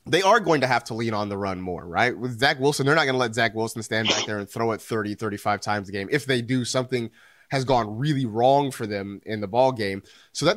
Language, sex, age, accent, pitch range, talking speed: English, male, 30-49, American, 115-145 Hz, 280 wpm